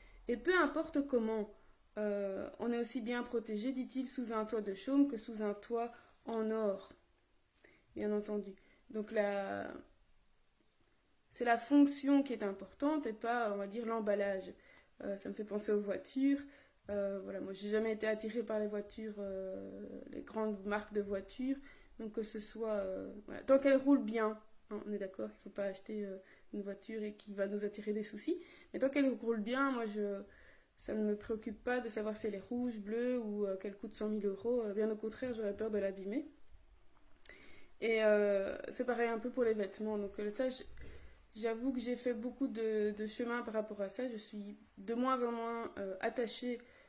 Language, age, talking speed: French, 20-39, 190 wpm